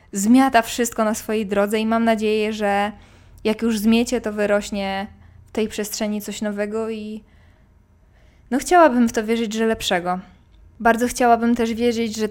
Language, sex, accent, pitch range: Polish, female, native, 195-225 Hz